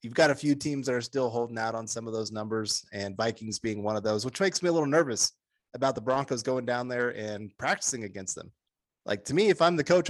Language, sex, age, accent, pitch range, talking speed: English, male, 30-49, American, 115-140 Hz, 260 wpm